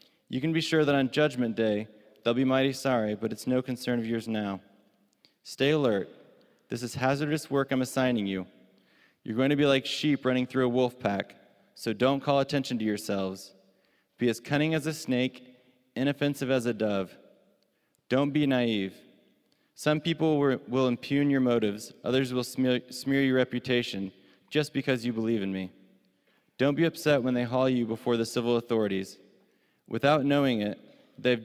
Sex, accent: male, American